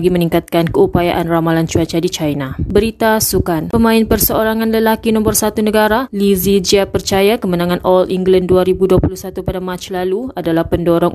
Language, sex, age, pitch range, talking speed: Malay, female, 20-39, 175-195 Hz, 140 wpm